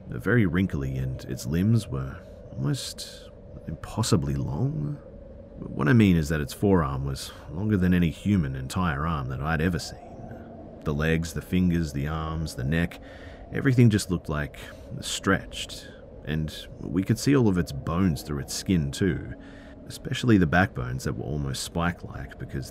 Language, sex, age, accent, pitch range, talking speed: English, male, 40-59, Australian, 75-100 Hz, 160 wpm